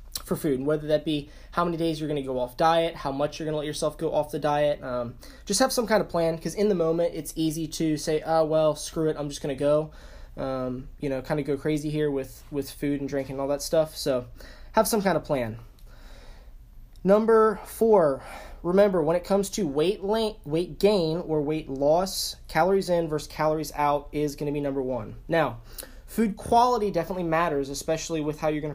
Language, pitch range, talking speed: English, 140-170 Hz, 220 wpm